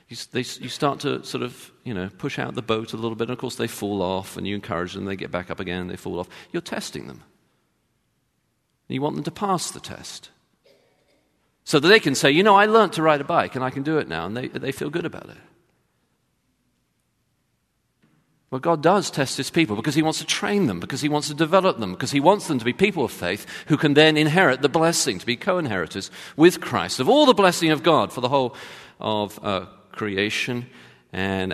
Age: 40-59